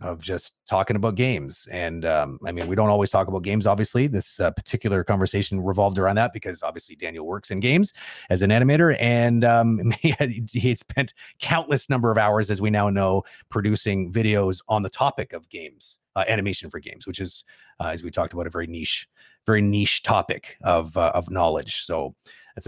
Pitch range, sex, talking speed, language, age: 100-130 Hz, male, 200 wpm, English, 30-49